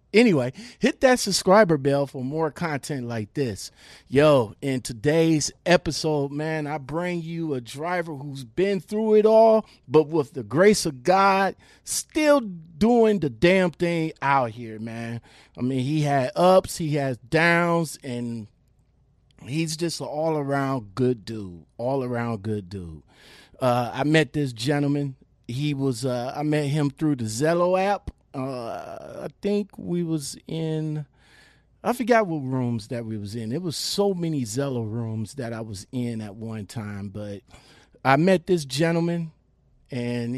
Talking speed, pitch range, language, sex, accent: 155 wpm, 120-165 Hz, English, male, American